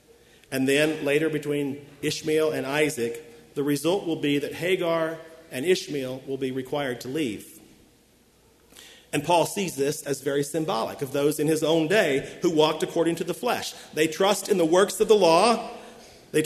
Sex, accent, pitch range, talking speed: male, American, 155-210 Hz, 175 wpm